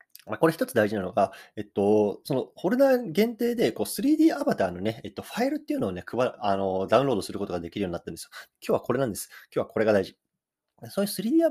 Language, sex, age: Japanese, male, 20-39